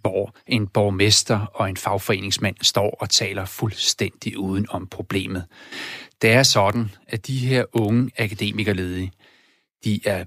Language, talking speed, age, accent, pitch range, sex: Danish, 135 wpm, 40-59, native, 100-130 Hz, male